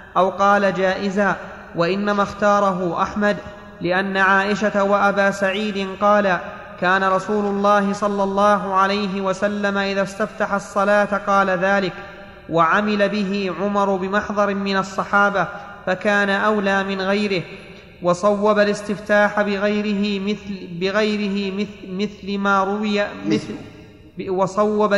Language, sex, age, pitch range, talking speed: Arabic, male, 30-49, 195-210 Hz, 105 wpm